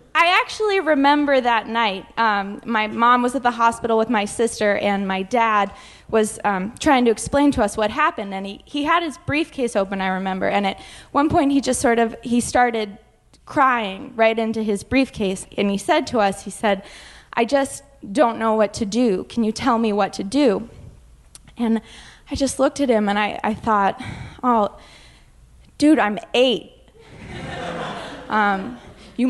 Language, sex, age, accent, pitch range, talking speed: English, female, 20-39, American, 210-270 Hz, 180 wpm